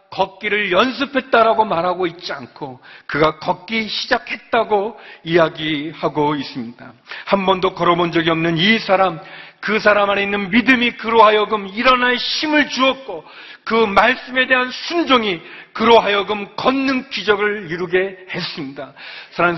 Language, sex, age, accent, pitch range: Korean, male, 40-59, native, 140-215 Hz